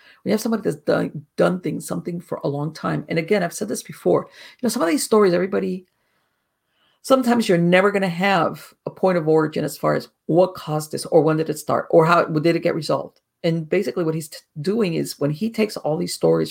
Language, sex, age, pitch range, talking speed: English, female, 50-69, 160-225 Hz, 235 wpm